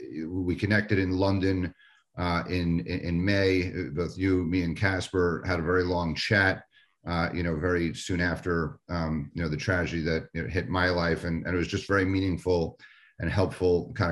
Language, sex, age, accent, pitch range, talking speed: English, male, 40-59, American, 80-95 Hz, 190 wpm